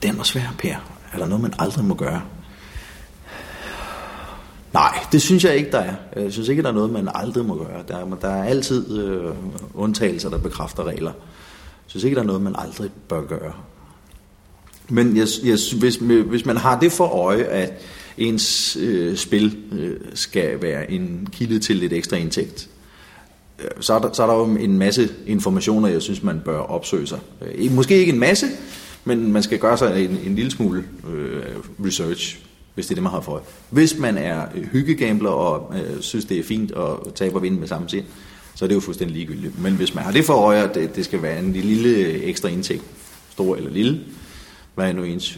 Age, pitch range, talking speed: 30-49, 95-125 Hz, 210 wpm